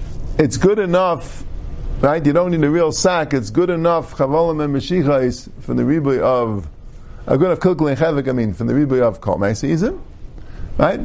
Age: 50-69